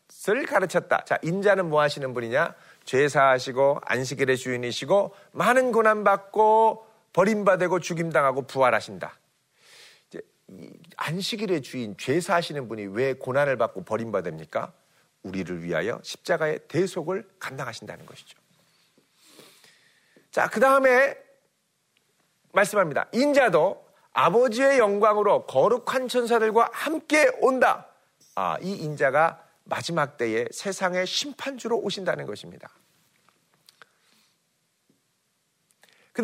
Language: Korean